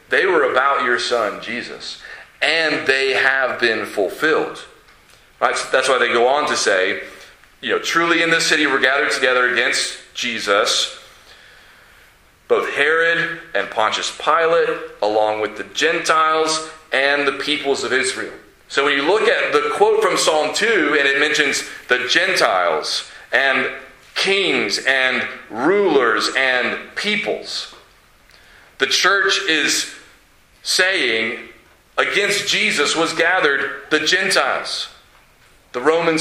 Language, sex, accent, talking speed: English, male, American, 130 wpm